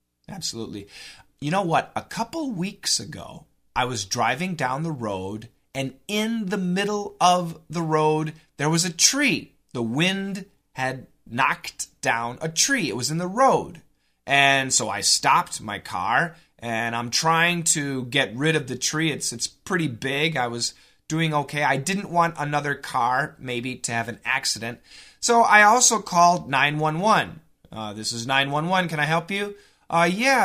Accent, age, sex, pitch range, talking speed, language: American, 30-49, male, 130-180 Hz, 170 wpm, English